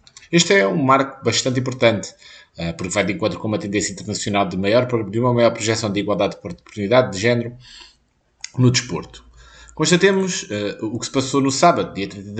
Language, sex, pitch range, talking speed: Portuguese, male, 105-135 Hz, 195 wpm